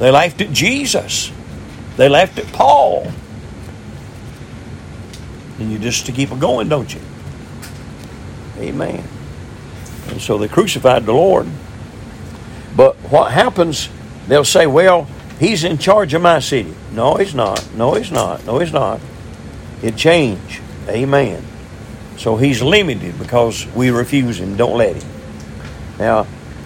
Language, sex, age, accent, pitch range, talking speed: English, male, 50-69, American, 110-150 Hz, 135 wpm